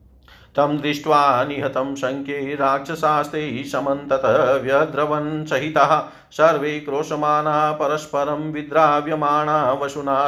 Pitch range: 115-150 Hz